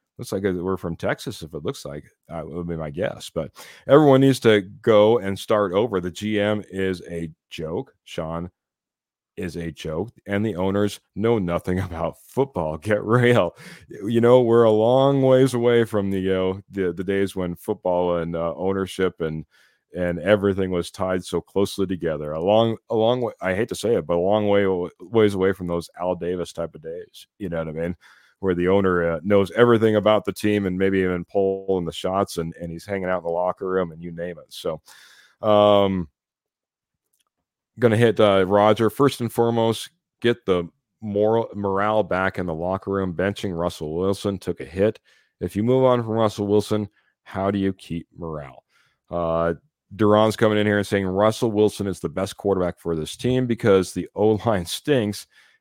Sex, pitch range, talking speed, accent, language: male, 90-110 Hz, 195 wpm, American, English